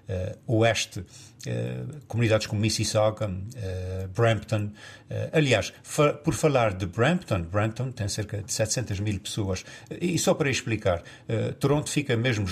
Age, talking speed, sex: 50-69, 150 wpm, male